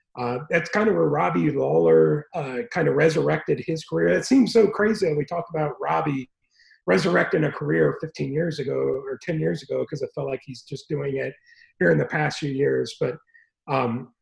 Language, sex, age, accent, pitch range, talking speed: English, male, 40-59, American, 125-180 Hz, 205 wpm